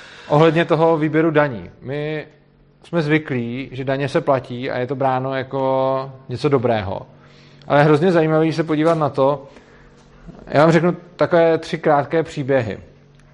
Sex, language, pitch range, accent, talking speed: male, Czech, 130-150 Hz, native, 150 wpm